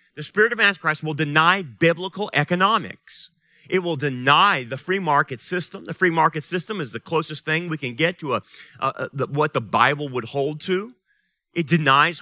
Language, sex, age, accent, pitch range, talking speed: English, male, 40-59, American, 155-195 Hz, 170 wpm